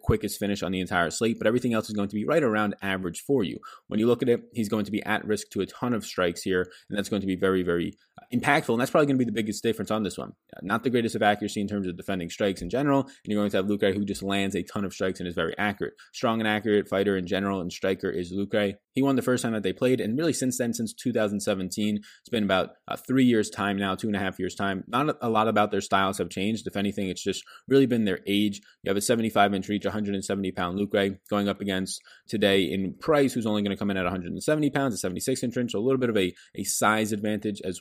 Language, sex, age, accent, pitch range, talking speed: English, male, 20-39, American, 95-115 Hz, 280 wpm